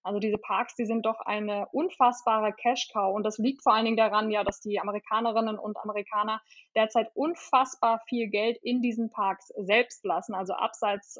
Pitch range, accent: 205-235 Hz, German